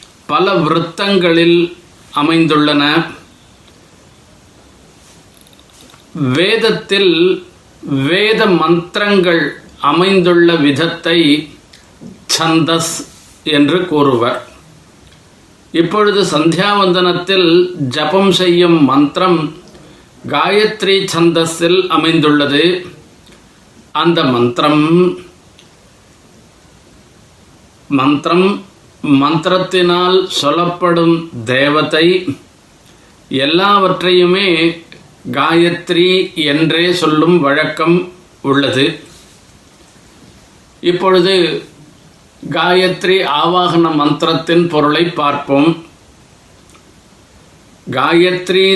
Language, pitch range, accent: Tamil, 150-180 Hz, native